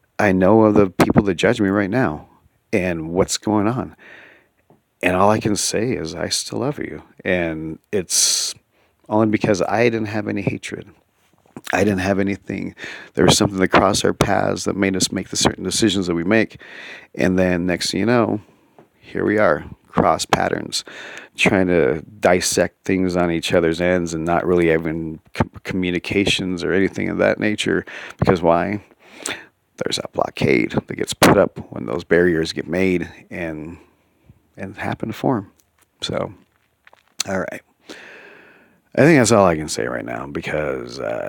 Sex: male